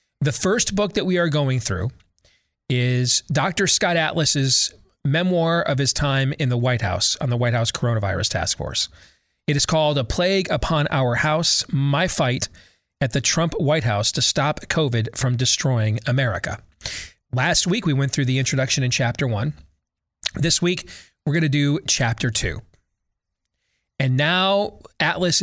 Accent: American